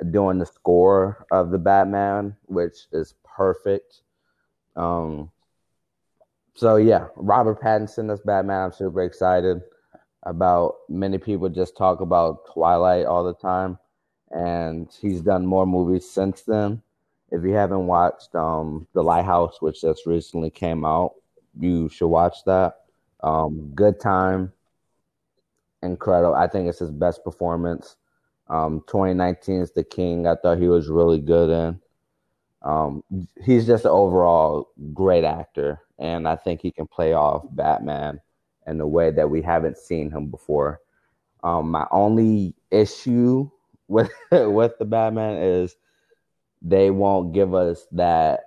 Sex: male